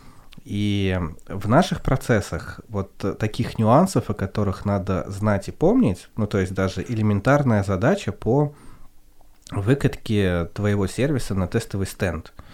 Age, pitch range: 20-39, 95-115 Hz